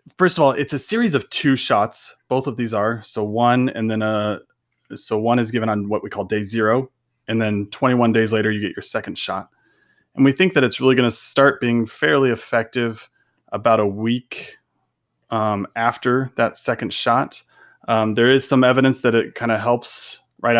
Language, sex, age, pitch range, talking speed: English, male, 20-39, 110-130 Hz, 200 wpm